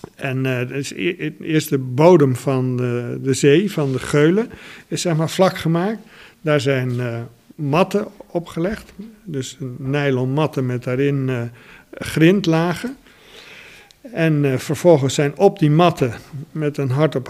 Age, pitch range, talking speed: 50-69, 130-165 Hz, 150 wpm